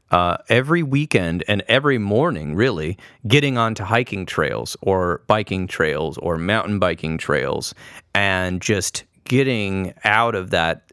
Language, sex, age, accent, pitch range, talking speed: English, male, 30-49, American, 95-125 Hz, 130 wpm